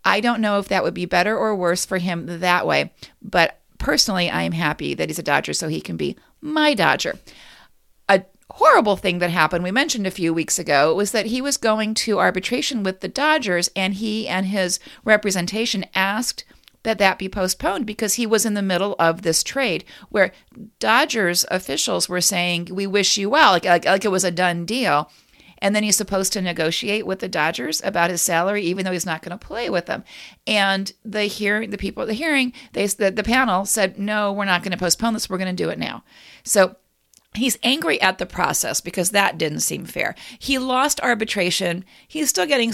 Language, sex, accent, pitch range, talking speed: English, female, American, 180-220 Hz, 210 wpm